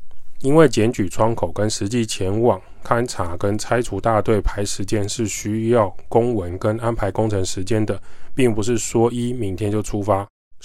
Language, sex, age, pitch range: Chinese, male, 20-39, 95-120 Hz